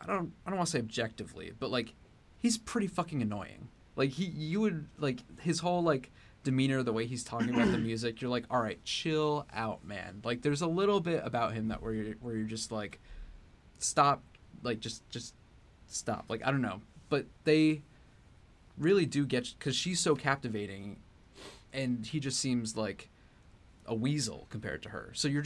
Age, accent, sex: 20-39, American, male